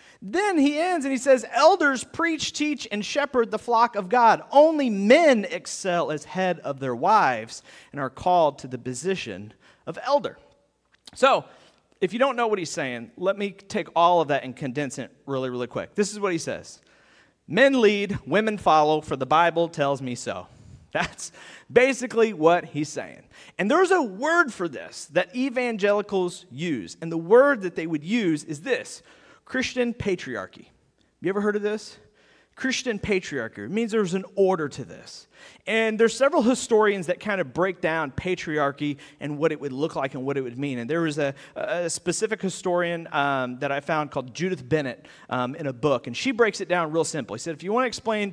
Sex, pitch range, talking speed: male, 150-220 Hz, 195 wpm